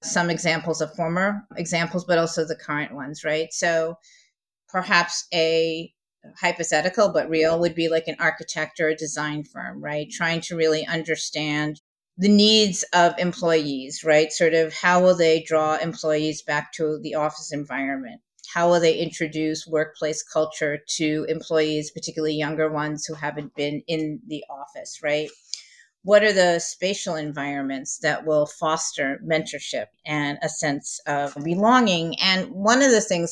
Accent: American